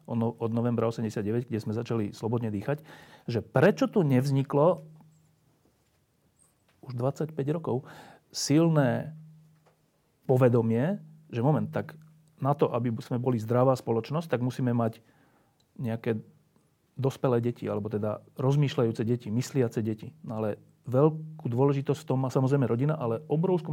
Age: 40-59